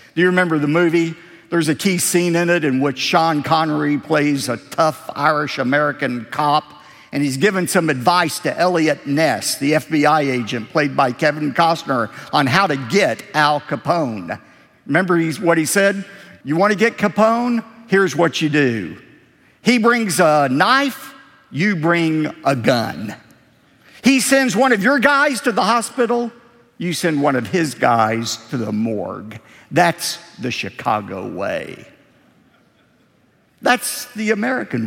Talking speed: 150 wpm